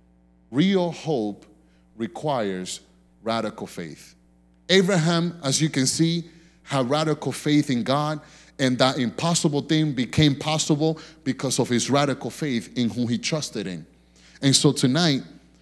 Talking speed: 130 wpm